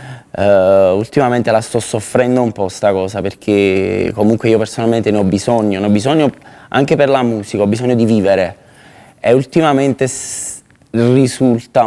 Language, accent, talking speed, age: Italian, native, 145 wpm, 20-39